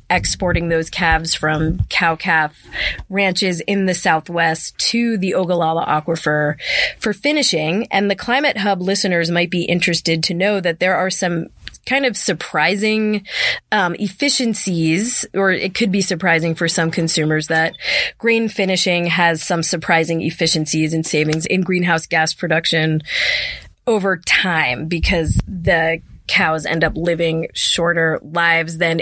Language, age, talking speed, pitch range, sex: English, 20-39, 140 wpm, 165-200 Hz, female